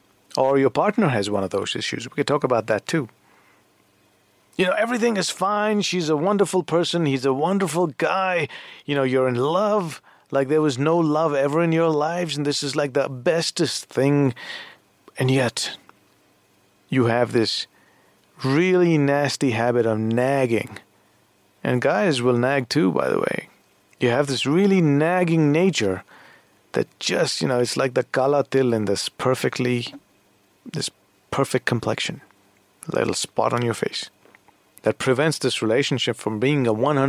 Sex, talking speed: male, 160 wpm